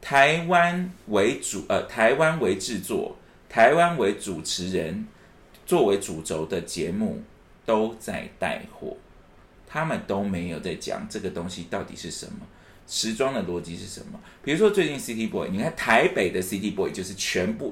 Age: 30-49